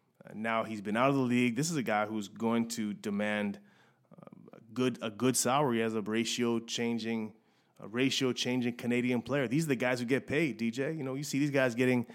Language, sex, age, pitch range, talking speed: English, male, 30-49, 115-140 Hz, 215 wpm